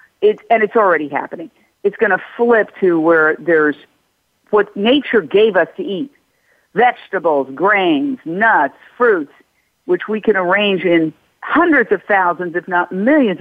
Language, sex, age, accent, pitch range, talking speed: English, female, 50-69, American, 175-275 Hz, 150 wpm